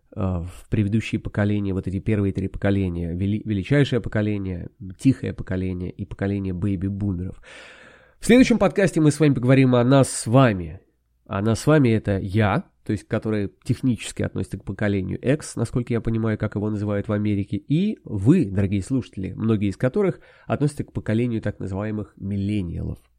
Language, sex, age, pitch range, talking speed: Russian, male, 20-39, 105-145 Hz, 160 wpm